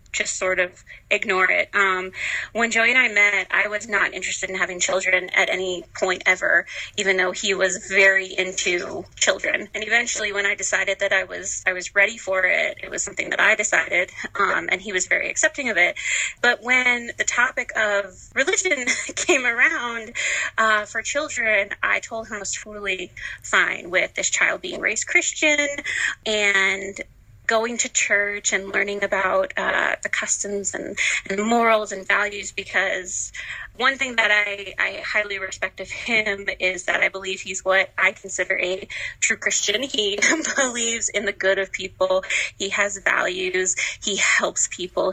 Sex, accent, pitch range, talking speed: female, American, 190-230 Hz, 170 wpm